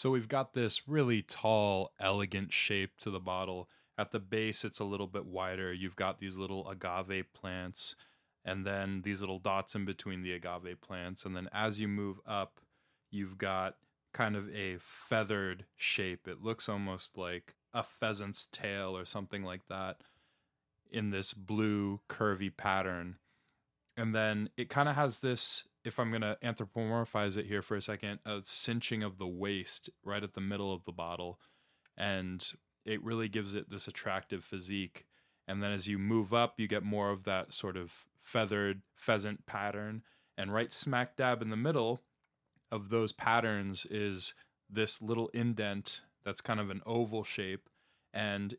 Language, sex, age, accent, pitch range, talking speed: English, male, 20-39, American, 95-110 Hz, 170 wpm